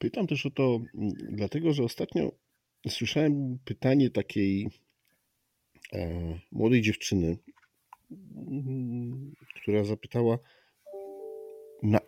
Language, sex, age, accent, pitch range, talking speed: Polish, male, 50-69, native, 95-125 Hz, 75 wpm